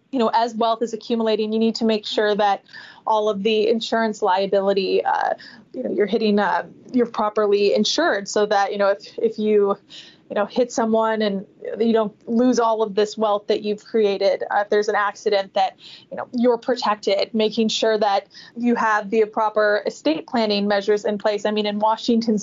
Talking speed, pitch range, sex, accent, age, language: 200 wpm, 210-235 Hz, female, American, 20-39, English